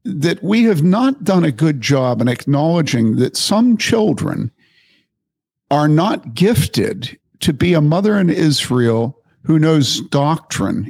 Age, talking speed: 50-69, 140 wpm